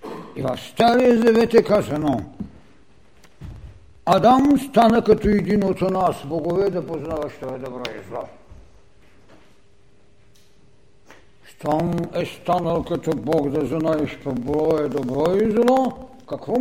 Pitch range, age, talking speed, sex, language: 120-190 Hz, 60-79, 115 wpm, male, Bulgarian